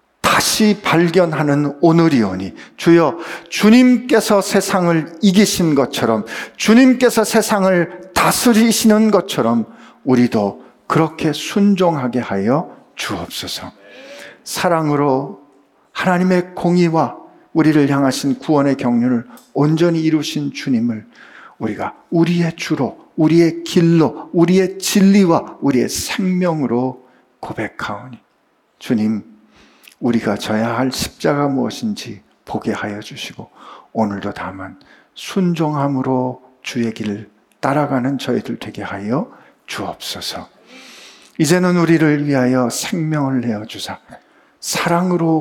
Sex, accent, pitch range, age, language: male, native, 125-185 Hz, 50-69, Korean